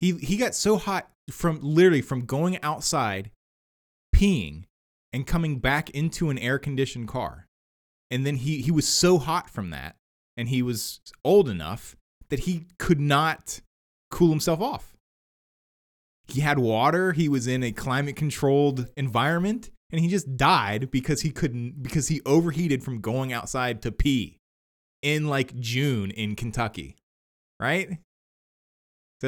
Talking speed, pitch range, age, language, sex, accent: 150 wpm, 105-150 Hz, 20-39, English, male, American